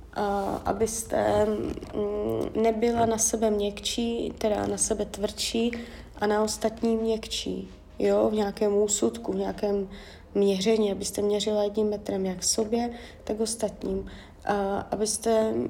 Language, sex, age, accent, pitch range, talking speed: Czech, female, 30-49, native, 205-230 Hz, 120 wpm